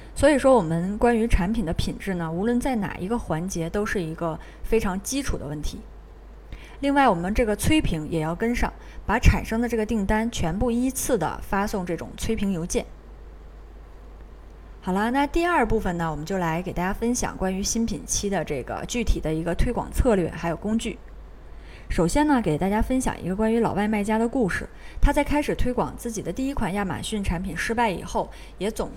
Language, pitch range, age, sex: Chinese, 175-235 Hz, 20-39, female